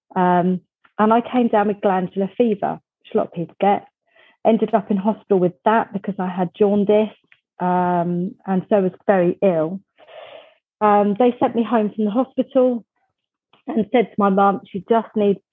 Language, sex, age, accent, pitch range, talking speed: English, female, 30-49, British, 185-220 Hz, 180 wpm